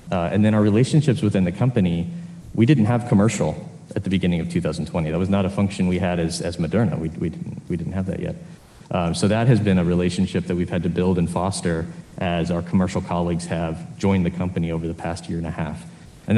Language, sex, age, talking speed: English, male, 30-49, 240 wpm